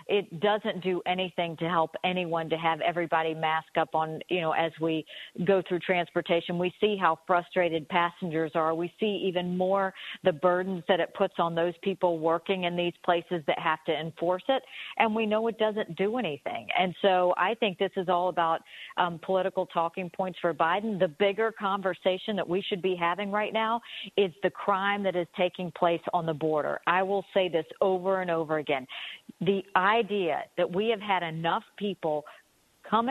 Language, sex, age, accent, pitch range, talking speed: English, female, 50-69, American, 170-205 Hz, 190 wpm